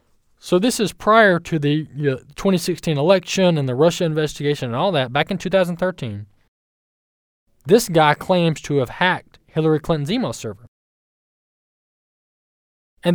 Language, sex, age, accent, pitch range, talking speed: English, male, 20-39, American, 125-175 Hz, 130 wpm